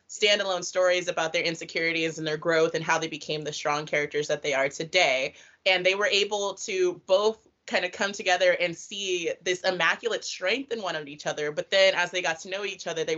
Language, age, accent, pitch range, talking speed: English, 20-39, American, 175-215 Hz, 225 wpm